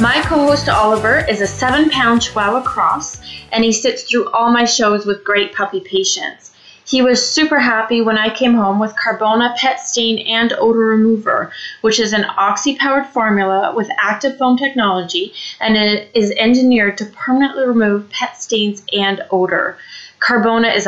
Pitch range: 195-245 Hz